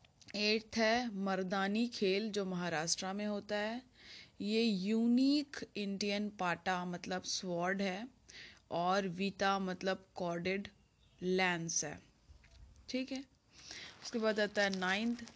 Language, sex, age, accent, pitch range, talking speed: Hindi, female, 20-39, native, 190-235 Hz, 115 wpm